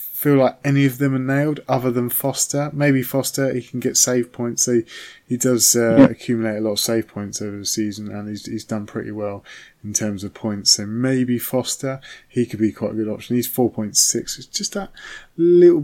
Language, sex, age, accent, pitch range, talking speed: English, male, 20-39, British, 110-135 Hz, 215 wpm